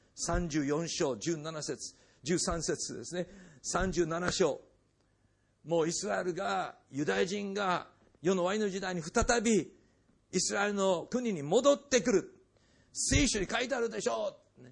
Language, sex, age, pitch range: Japanese, male, 50-69, 135-215 Hz